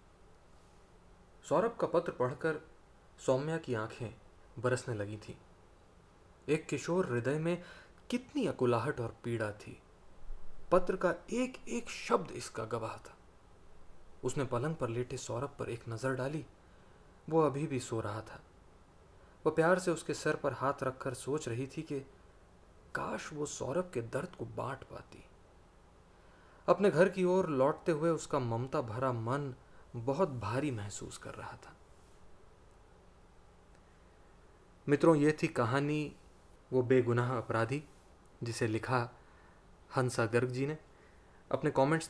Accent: Indian